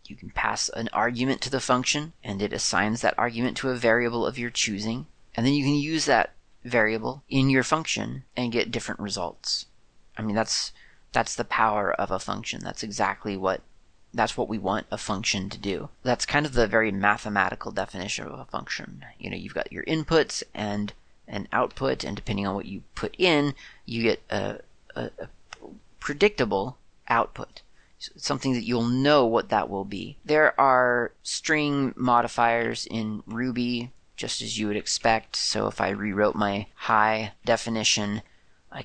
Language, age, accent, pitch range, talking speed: English, 30-49, American, 105-125 Hz, 175 wpm